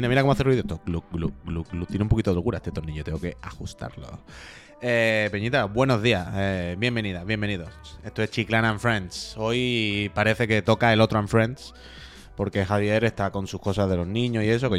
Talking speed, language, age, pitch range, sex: 205 wpm, Spanish, 20-39, 95-125 Hz, male